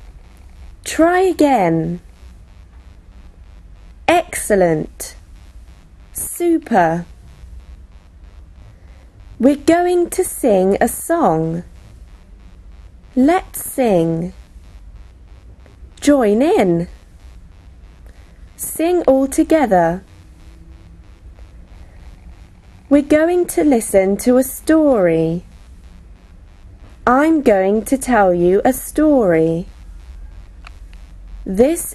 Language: English